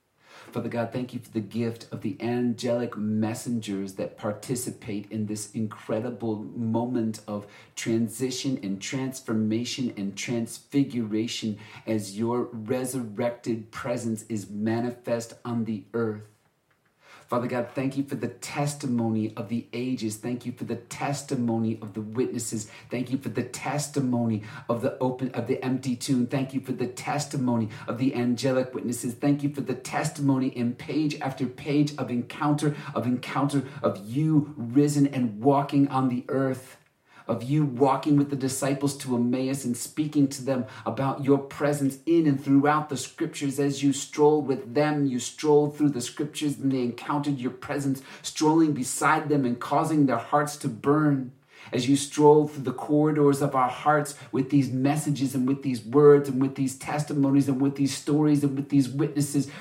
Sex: male